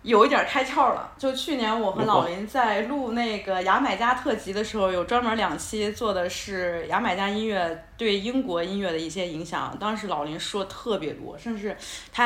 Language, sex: Chinese, female